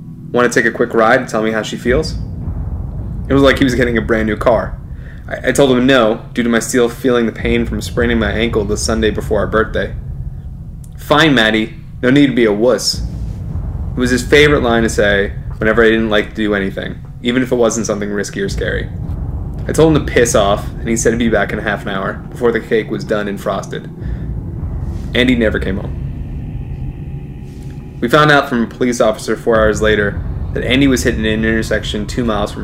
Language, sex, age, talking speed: English, male, 20-39, 225 wpm